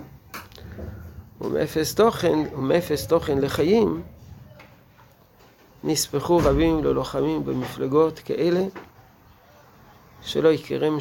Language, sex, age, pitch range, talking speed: Hebrew, male, 50-69, 115-155 Hz, 65 wpm